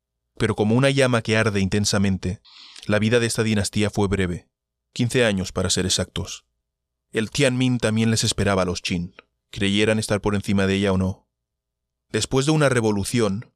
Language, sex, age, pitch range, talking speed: Spanish, male, 20-39, 95-115 Hz, 175 wpm